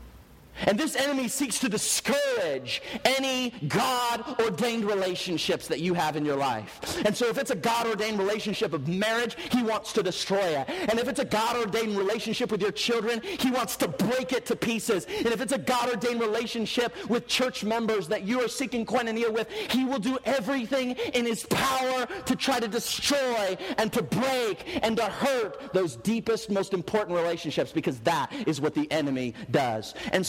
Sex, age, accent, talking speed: male, 40-59, American, 180 wpm